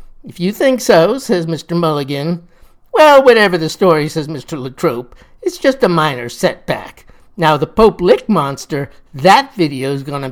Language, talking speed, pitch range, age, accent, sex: English, 155 wpm, 155-225 Hz, 50-69, American, male